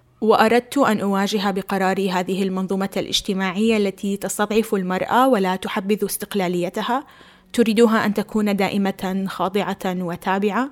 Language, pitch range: Arabic, 190-230 Hz